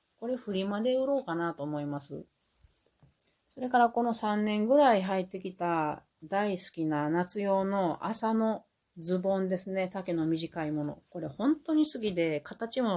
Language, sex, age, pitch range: Japanese, female, 40-59, 155-215 Hz